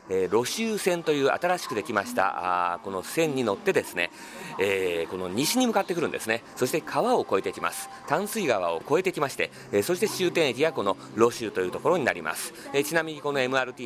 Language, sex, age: Japanese, male, 40-59